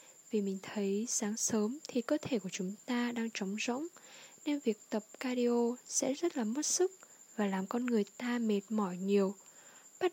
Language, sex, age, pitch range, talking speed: Vietnamese, female, 10-29, 210-260 Hz, 190 wpm